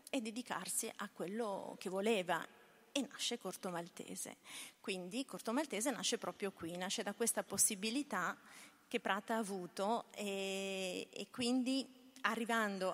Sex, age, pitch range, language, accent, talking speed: female, 40-59, 180-220 Hz, Italian, native, 120 wpm